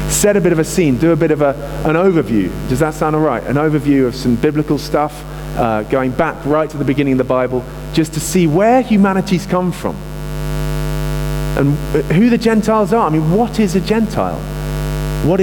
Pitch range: 150-185 Hz